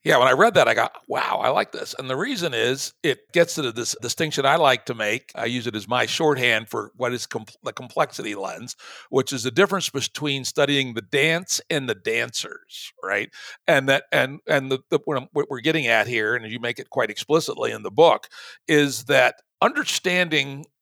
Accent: American